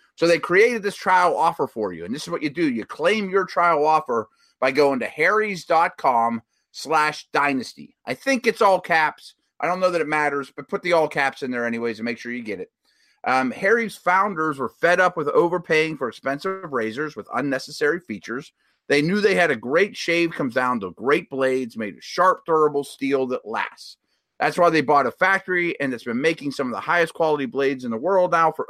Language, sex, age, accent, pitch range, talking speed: English, male, 30-49, American, 135-180 Hz, 215 wpm